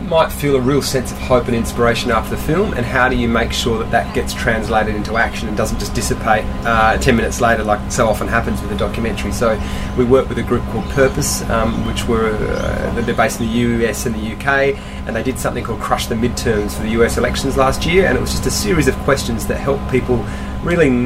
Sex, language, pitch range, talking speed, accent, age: male, English, 115-135 Hz, 240 wpm, Australian, 30-49